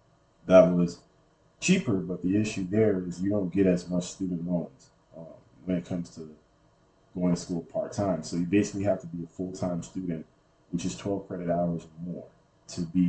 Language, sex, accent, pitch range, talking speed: English, male, American, 85-100 Hz, 200 wpm